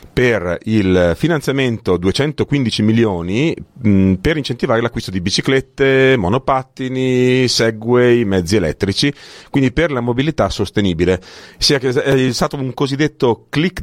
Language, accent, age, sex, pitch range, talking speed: Italian, native, 40-59, male, 100-130 Hz, 105 wpm